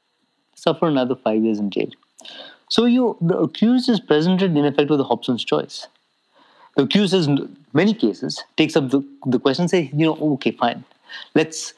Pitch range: 140-210 Hz